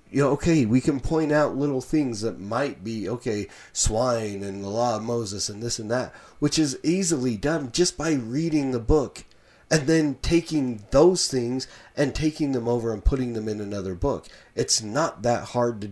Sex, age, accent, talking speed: male, 40-59, American, 200 wpm